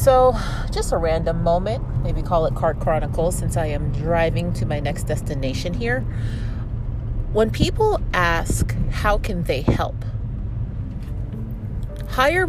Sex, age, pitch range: female, 30-49, 105-125 Hz